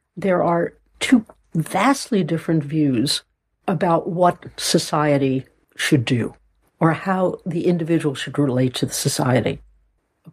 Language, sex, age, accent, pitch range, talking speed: English, female, 60-79, American, 150-195 Hz, 120 wpm